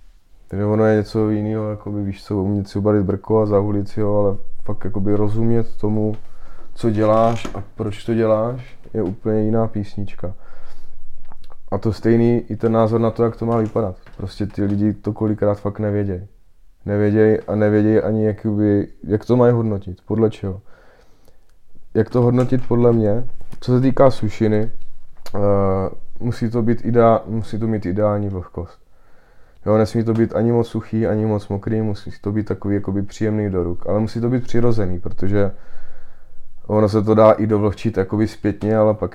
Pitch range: 100-110 Hz